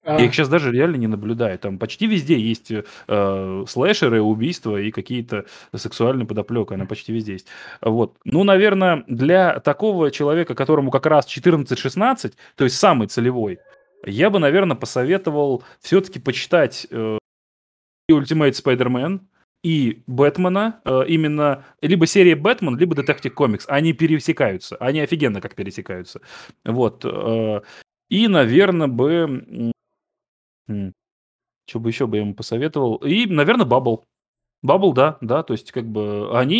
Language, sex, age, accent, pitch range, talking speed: Russian, male, 20-39, native, 115-155 Hz, 140 wpm